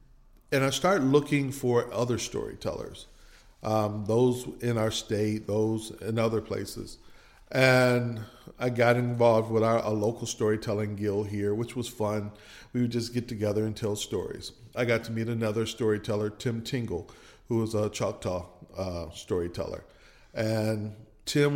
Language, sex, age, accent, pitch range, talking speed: English, male, 50-69, American, 100-125 Hz, 150 wpm